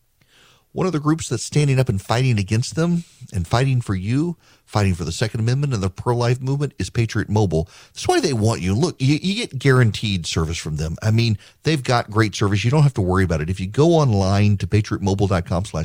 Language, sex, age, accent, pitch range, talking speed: English, male, 40-59, American, 105-145 Hz, 225 wpm